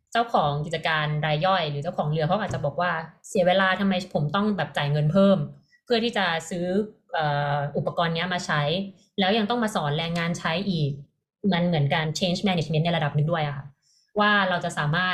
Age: 20-39